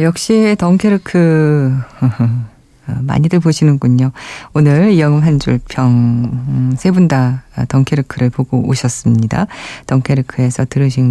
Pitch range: 130-190 Hz